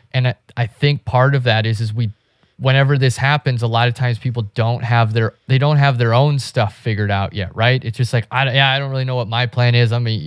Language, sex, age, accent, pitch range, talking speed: English, male, 20-39, American, 105-125 Hz, 265 wpm